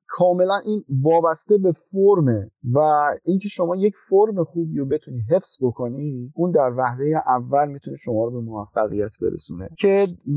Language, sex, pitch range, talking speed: Persian, male, 130-185 Hz, 150 wpm